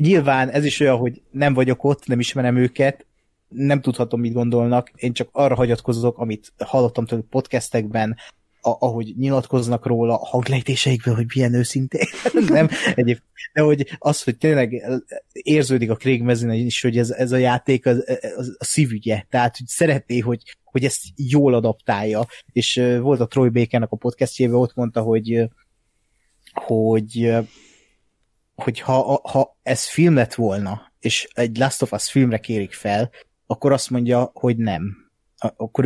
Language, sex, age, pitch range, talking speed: Hungarian, male, 20-39, 115-130 Hz, 155 wpm